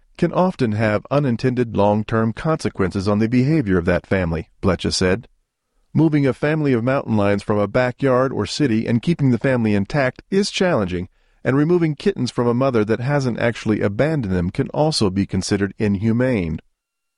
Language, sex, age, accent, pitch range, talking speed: English, male, 40-59, American, 100-135 Hz, 170 wpm